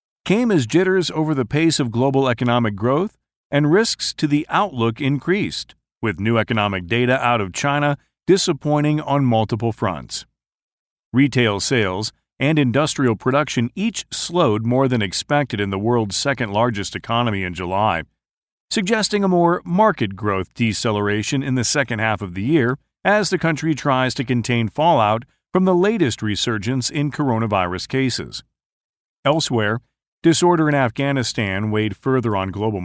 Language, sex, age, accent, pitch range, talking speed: English, male, 40-59, American, 110-150 Hz, 145 wpm